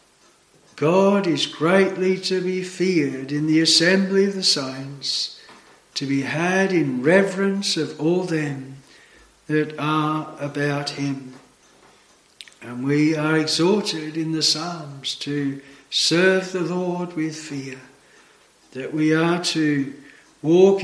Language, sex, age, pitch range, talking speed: English, male, 60-79, 145-185 Hz, 120 wpm